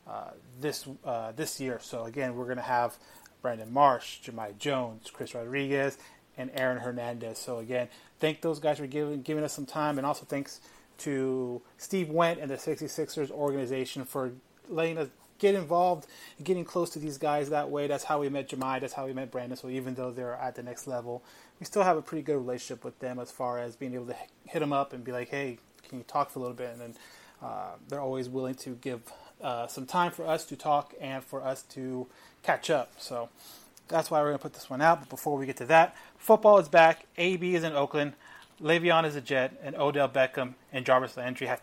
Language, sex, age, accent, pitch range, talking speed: English, male, 30-49, American, 130-160 Hz, 225 wpm